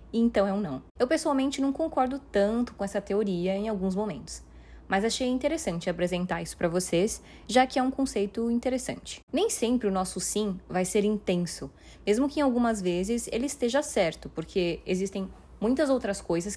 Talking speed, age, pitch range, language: 180 wpm, 20-39, 185-240 Hz, Portuguese